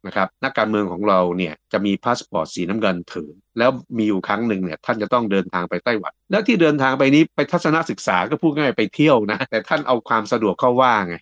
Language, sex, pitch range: Thai, male, 90-120 Hz